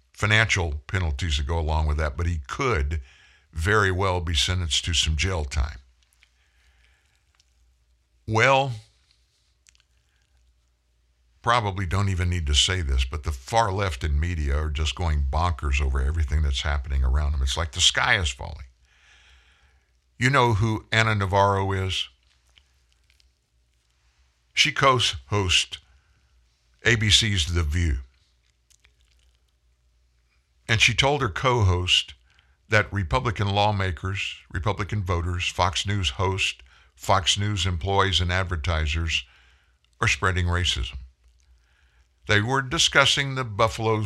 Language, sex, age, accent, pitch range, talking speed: English, male, 60-79, American, 70-100 Hz, 115 wpm